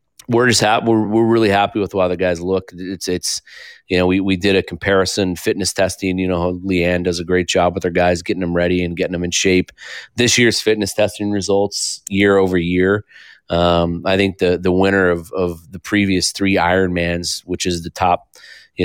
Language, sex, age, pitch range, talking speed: English, male, 30-49, 90-100 Hz, 215 wpm